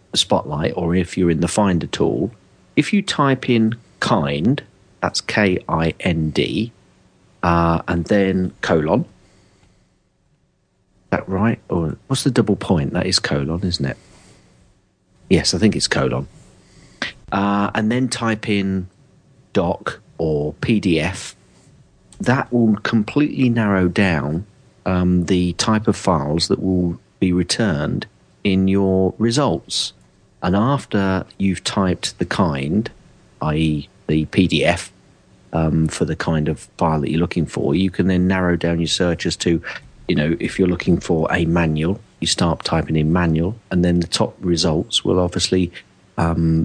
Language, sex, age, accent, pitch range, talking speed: English, male, 40-59, British, 85-100 Hz, 140 wpm